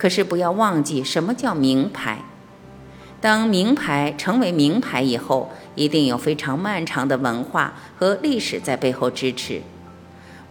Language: Chinese